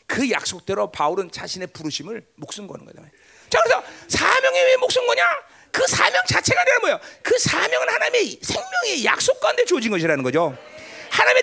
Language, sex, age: Korean, male, 40-59